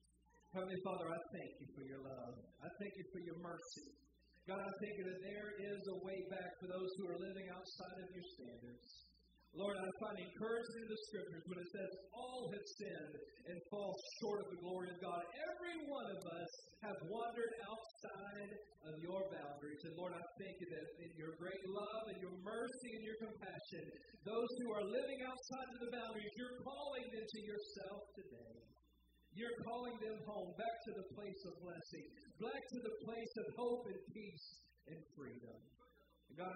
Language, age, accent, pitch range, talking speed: English, 50-69, American, 170-205 Hz, 185 wpm